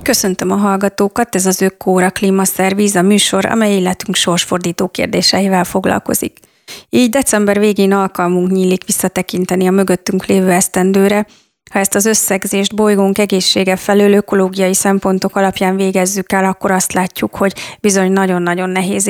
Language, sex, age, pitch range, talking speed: Hungarian, female, 30-49, 185-205 Hz, 135 wpm